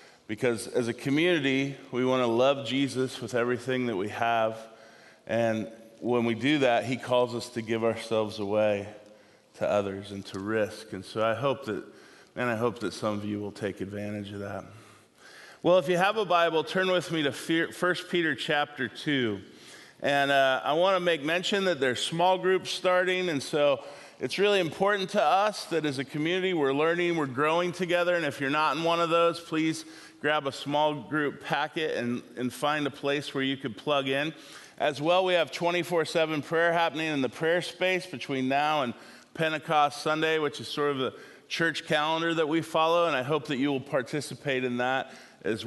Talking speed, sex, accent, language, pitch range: 195 wpm, male, American, English, 120-170 Hz